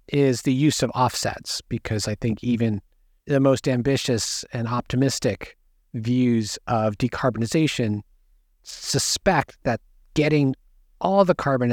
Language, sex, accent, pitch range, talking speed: English, male, American, 105-135 Hz, 120 wpm